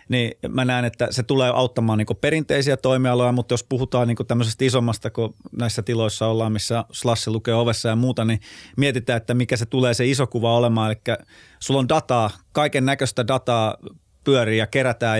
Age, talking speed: 30-49, 180 wpm